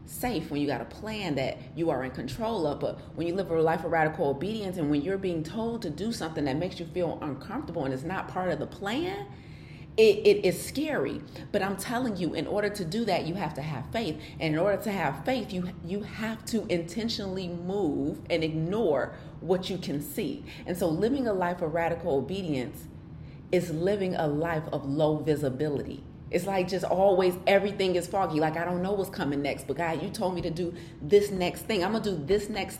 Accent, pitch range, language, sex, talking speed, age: American, 155-195 Hz, English, female, 225 wpm, 30-49